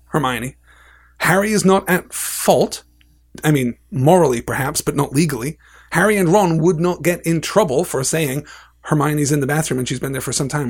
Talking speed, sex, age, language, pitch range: 190 wpm, male, 30-49, English, 120-165 Hz